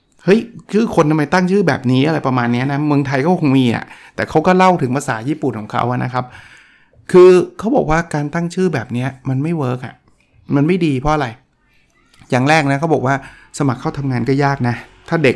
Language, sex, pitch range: Thai, male, 130-170 Hz